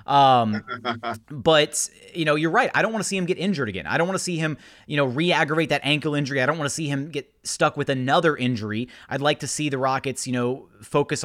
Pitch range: 125-150 Hz